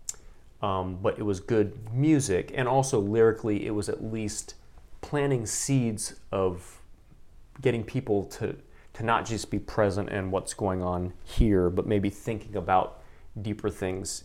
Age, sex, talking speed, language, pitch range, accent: 30-49, male, 145 wpm, English, 95-120 Hz, American